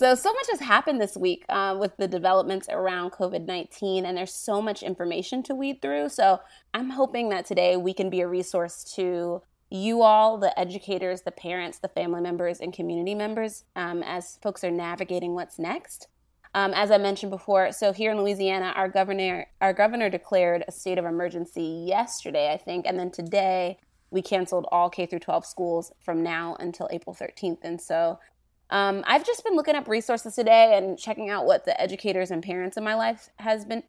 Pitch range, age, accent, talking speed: 175-205 Hz, 20-39, American, 195 wpm